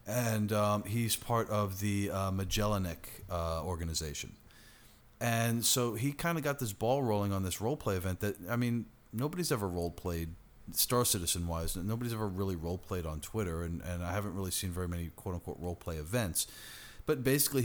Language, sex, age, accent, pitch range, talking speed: English, male, 40-59, American, 90-115 Hz, 185 wpm